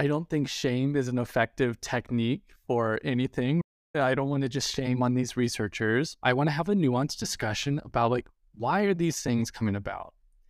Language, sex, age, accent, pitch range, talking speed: English, male, 20-39, American, 115-155 Hz, 195 wpm